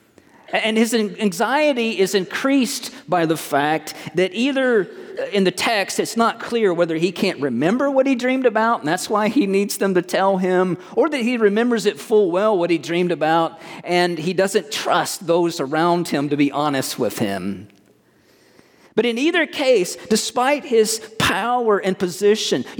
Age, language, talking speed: 40-59, English, 175 wpm